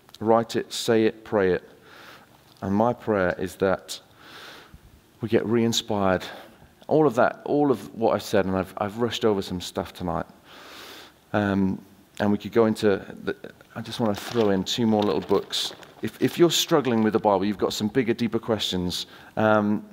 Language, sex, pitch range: English, male, 100-120 Hz